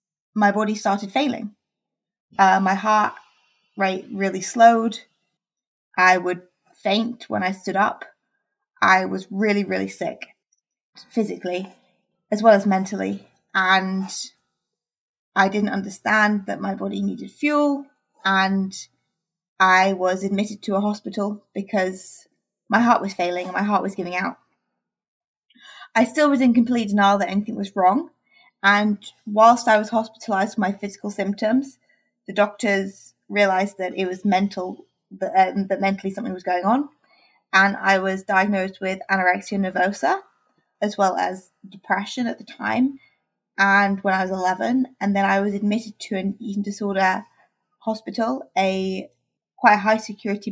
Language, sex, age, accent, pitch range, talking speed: English, female, 20-39, British, 190-220 Hz, 145 wpm